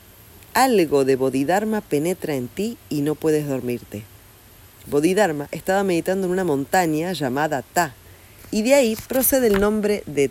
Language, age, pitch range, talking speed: Spanish, 40-59, 110-180 Hz, 145 wpm